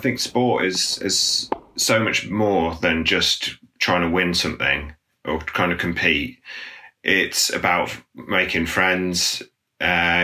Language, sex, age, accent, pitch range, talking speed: English, male, 30-49, British, 85-95 Hz, 135 wpm